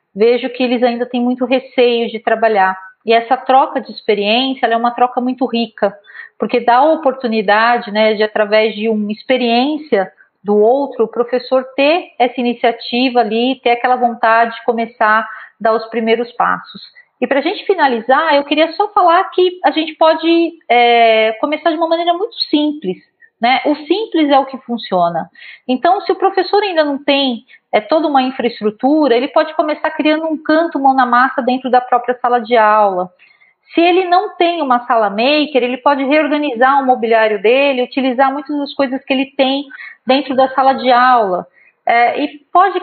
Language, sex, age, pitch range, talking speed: Portuguese, female, 40-59, 235-305 Hz, 180 wpm